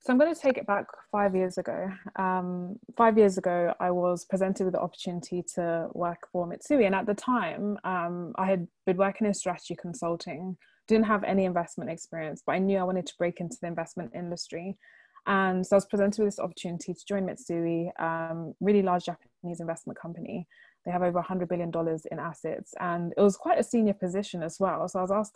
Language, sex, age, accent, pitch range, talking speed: English, female, 20-39, British, 170-200 Hz, 210 wpm